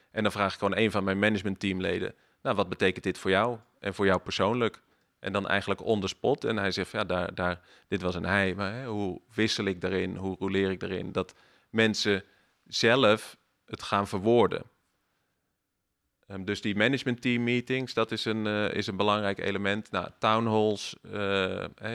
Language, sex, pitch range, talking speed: Dutch, male, 95-110 Hz, 185 wpm